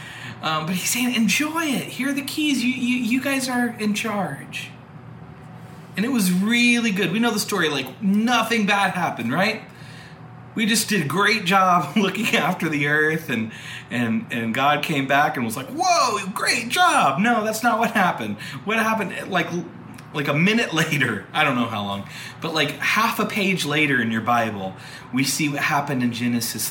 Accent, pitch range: American, 125-190 Hz